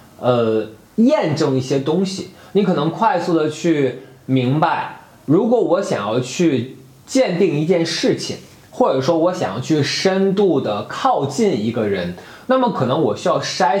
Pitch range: 130-185 Hz